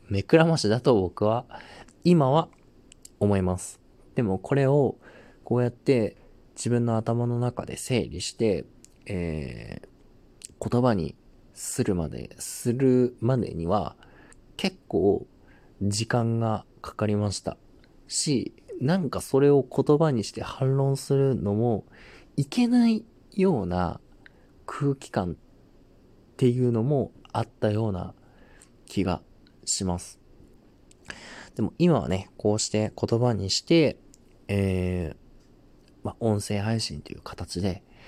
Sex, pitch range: male, 95-125 Hz